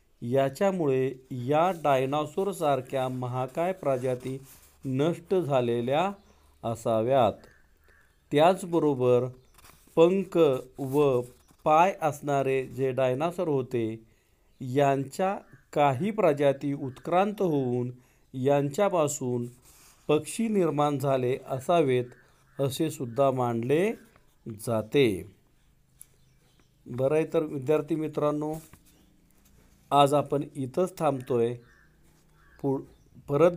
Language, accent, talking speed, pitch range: Marathi, native, 55 wpm, 125-155 Hz